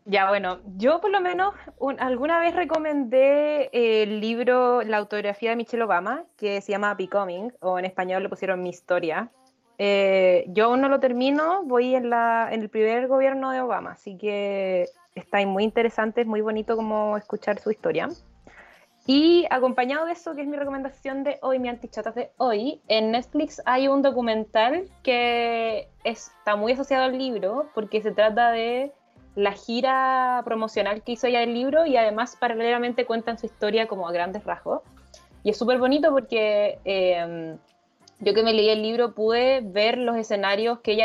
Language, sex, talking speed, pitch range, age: Spanish, female, 175 wpm, 200-250 Hz, 20-39